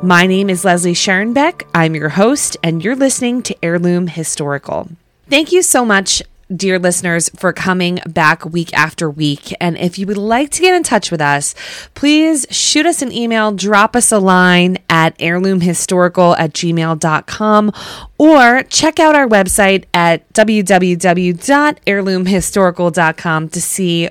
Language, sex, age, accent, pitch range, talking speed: English, female, 20-39, American, 165-215 Hz, 145 wpm